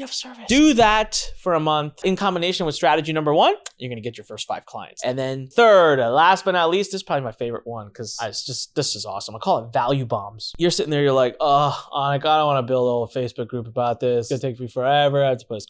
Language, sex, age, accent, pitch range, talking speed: English, male, 20-39, American, 130-220 Hz, 270 wpm